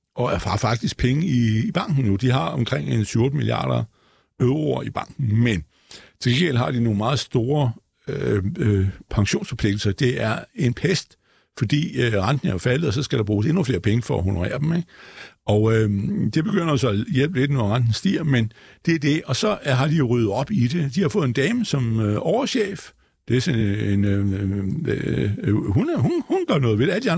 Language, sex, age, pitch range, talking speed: Danish, male, 60-79, 110-145 Hz, 210 wpm